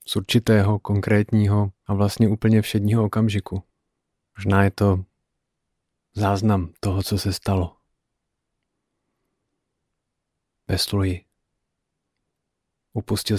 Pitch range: 100-115 Hz